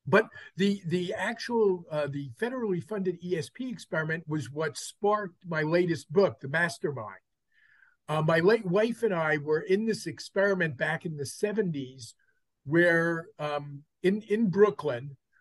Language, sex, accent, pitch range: English, male, American, 155-200 Hz